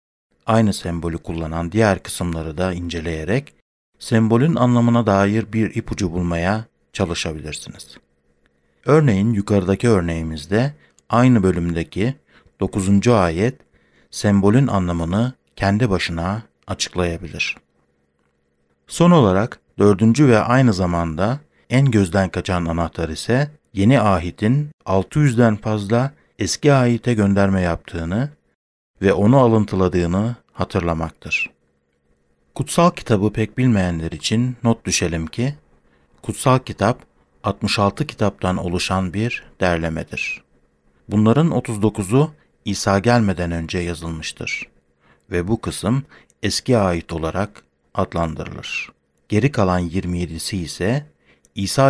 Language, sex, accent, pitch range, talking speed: Turkish, male, native, 85-115 Hz, 95 wpm